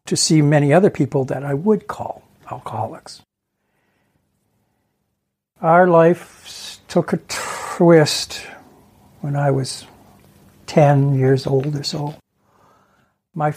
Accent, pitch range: American, 140-170 Hz